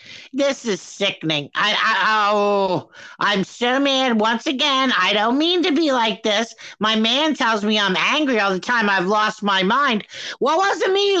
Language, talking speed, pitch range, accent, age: English, 195 wpm, 215-290 Hz, American, 50-69